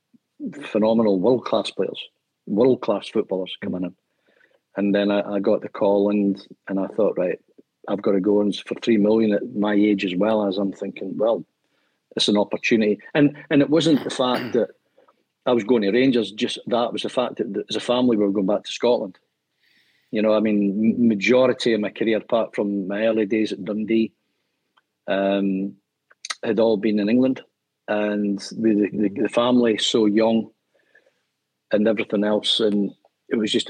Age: 50-69